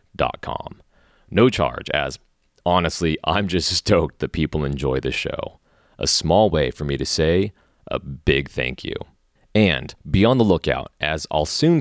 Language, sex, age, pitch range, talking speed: English, male, 30-49, 70-90 Hz, 170 wpm